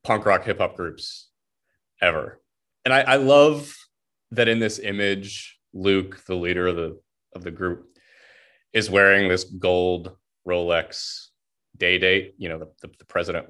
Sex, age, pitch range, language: male, 30-49, 95-120 Hz, English